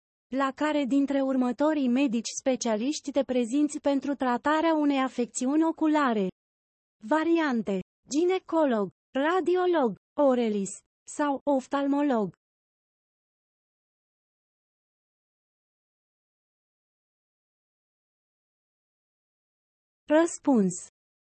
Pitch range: 235-310 Hz